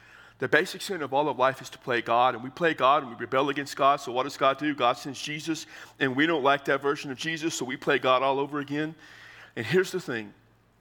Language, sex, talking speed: English, male, 260 wpm